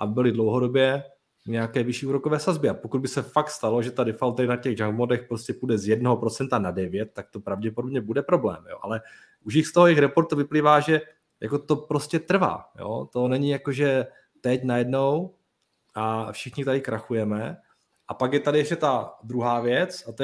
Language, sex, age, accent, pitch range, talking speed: Czech, male, 20-39, native, 120-150 Hz, 195 wpm